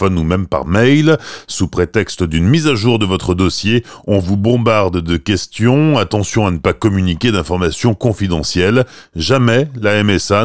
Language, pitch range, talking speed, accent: French, 90-125 Hz, 160 wpm, French